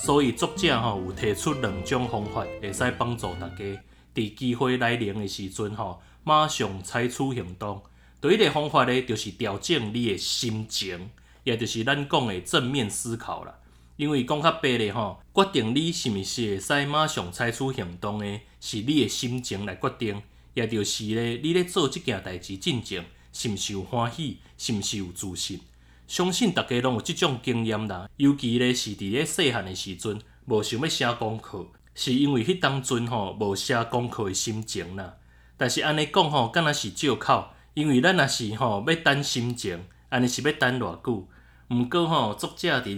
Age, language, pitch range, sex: 20-39, Chinese, 100-140 Hz, male